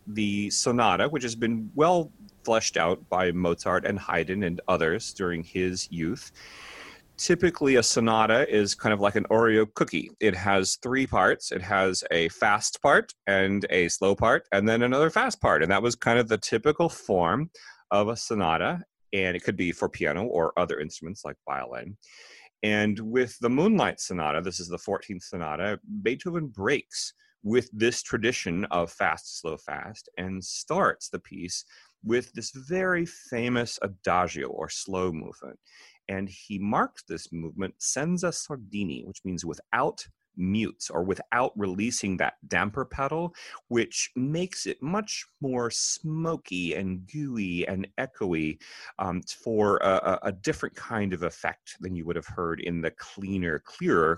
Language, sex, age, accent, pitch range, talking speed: English, male, 30-49, American, 95-130 Hz, 155 wpm